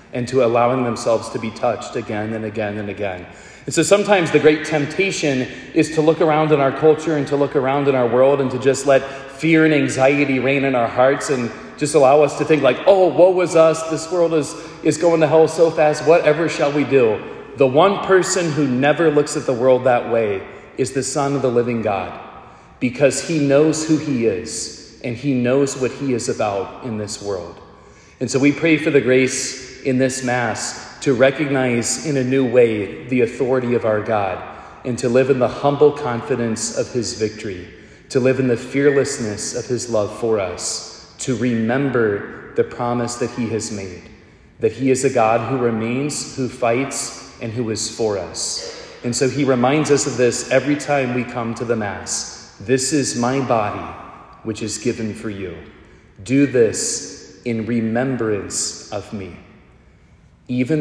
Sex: male